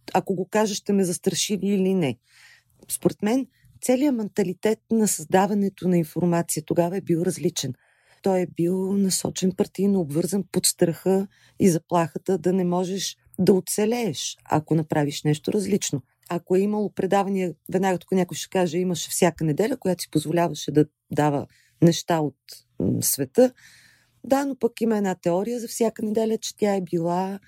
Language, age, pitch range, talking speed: Bulgarian, 40-59, 165-210 Hz, 155 wpm